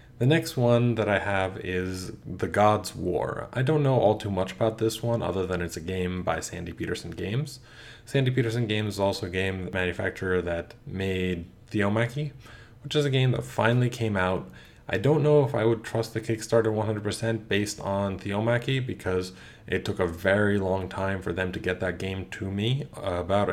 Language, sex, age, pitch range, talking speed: English, male, 20-39, 95-120 Hz, 195 wpm